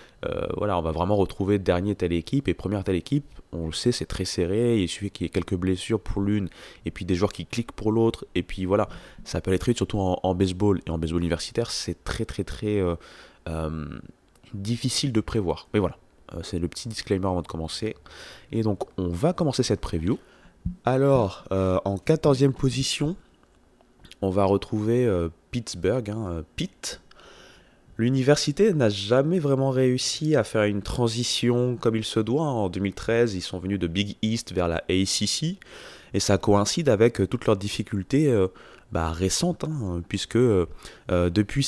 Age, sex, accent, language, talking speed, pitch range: 20-39, male, French, French, 185 wpm, 90-120 Hz